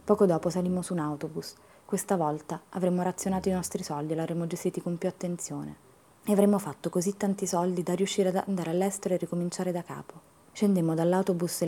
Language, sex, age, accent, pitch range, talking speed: Italian, female, 20-39, native, 160-195 Hz, 195 wpm